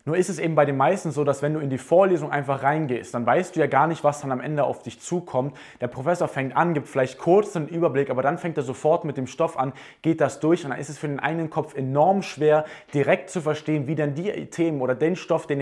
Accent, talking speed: German, 275 wpm